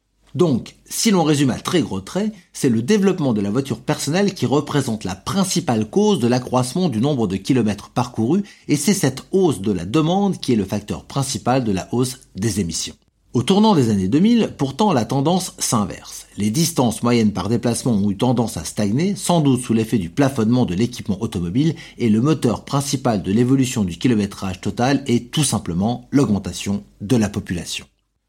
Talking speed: 185 wpm